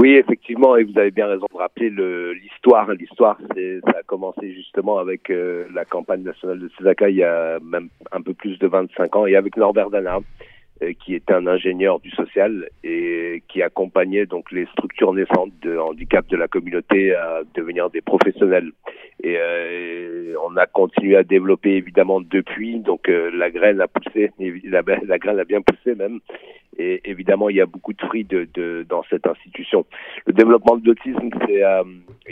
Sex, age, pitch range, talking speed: male, 50-69, 90-105 Hz, 190 wpm